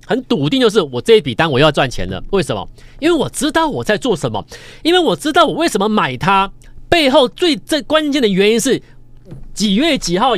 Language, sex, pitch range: Chinese, male, 140-225 Hz